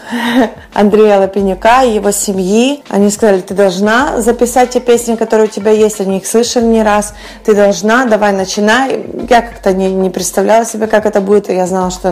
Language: Russian